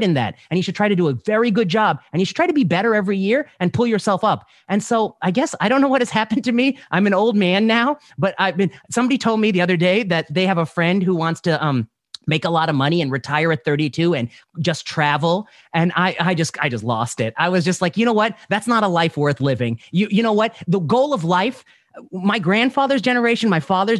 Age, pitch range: 30-49, 165-230 Hz